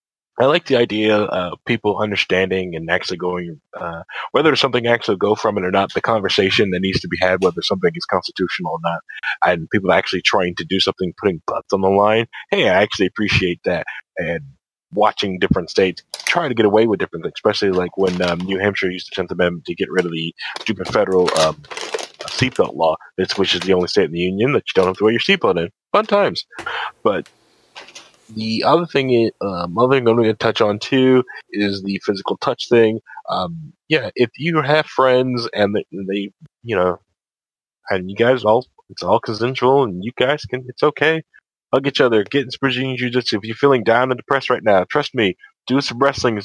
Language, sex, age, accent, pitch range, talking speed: English, male, 30-49, American, 95-130 Hz, 210 wpm